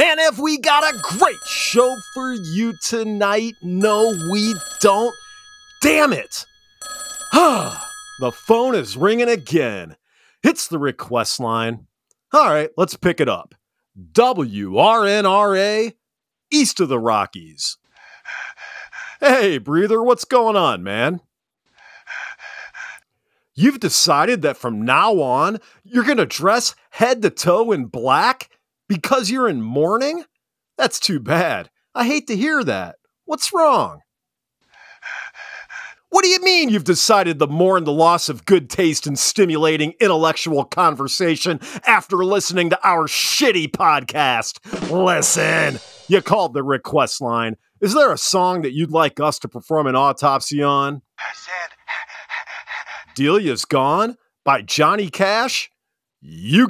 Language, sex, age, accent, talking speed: English, male, 40-59, American, 125 wpm